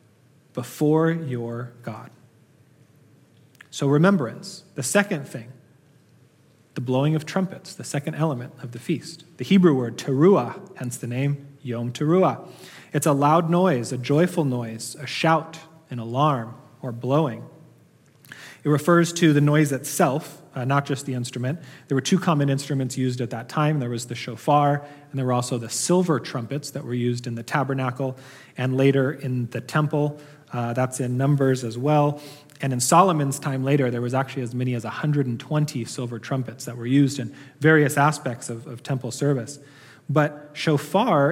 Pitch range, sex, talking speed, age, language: 125-150 Hz, male, 165 wpm, 30-49, English